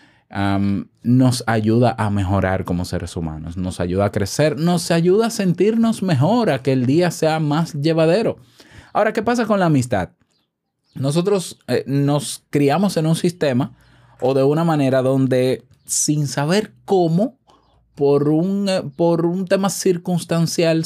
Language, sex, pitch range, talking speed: Spanish, male, 105-165 Hz, 145 wpm